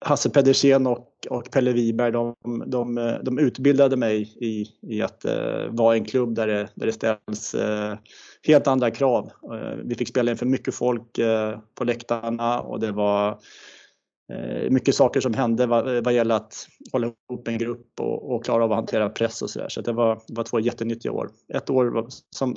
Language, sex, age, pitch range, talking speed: Swedish, male, 20-39, 110-125 Hz, 200 wpm